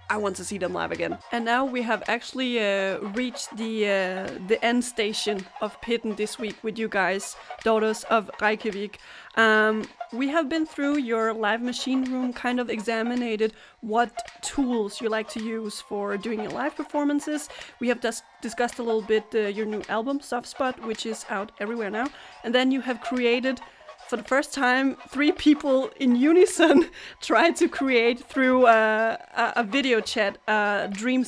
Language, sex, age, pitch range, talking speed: Danish, female, 30-49, 205-255 Hz, 175 wpm